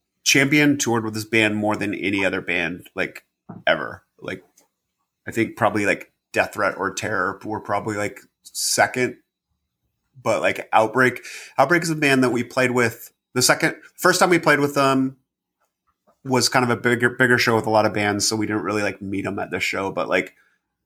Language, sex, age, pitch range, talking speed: English, male, 30-49, 100-120 Hz, 195 wpm